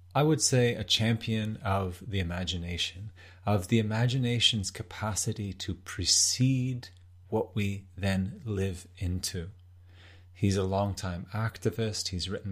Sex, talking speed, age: male, 120 wpm, 30-49